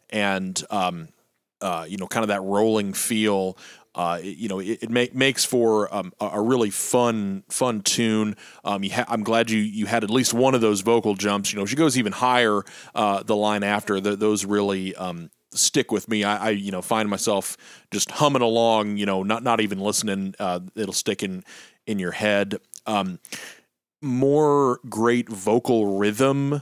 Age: 30-49